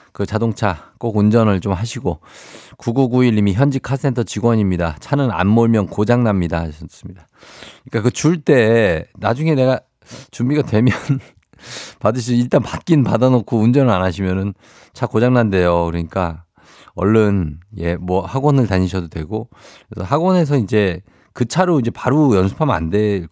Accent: native